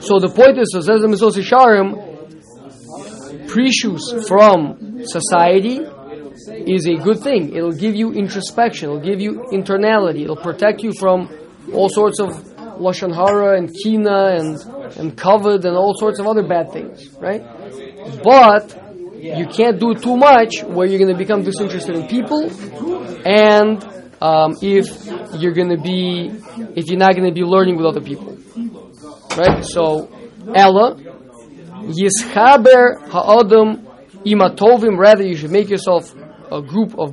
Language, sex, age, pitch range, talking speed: English, male, 20-39, 180-225 Hz, 140 wpm